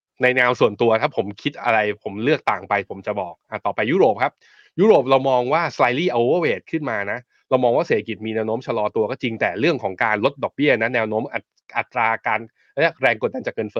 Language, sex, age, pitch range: Thai, male, 20-39, 105-130 Hz